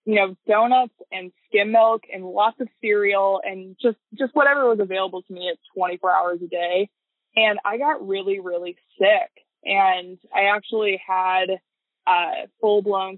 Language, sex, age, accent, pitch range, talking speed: English, female, 20-39, American, 180-215 Hz, 165 wpm